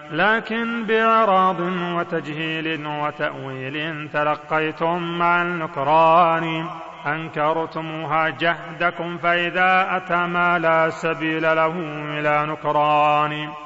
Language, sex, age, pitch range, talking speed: Arabic, male, 30-49, 155-175 Hz, 75 wpm